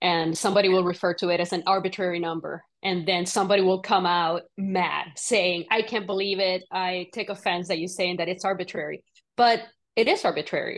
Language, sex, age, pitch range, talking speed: English, female, 20-39, 180-220 Hz, 195 wpm